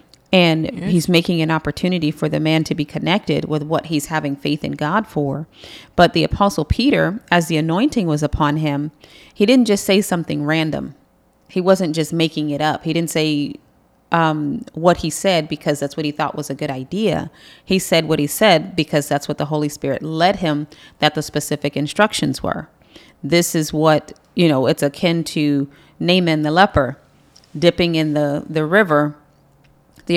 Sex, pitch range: female, 150-170 Hz